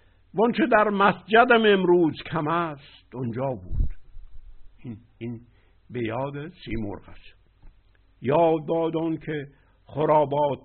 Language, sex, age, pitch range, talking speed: Persian, male, 60-79, 95-150 Hz, 90 wpm